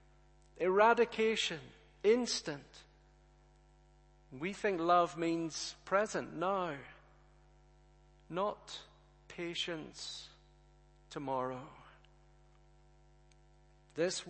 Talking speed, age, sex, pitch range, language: 50 wpm, 50-69, male, 155-210 Hz, English